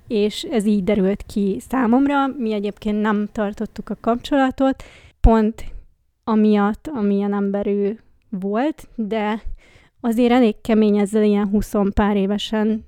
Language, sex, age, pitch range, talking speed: Hungarian, female, 20-39, 210-235 Hz, 125 wpm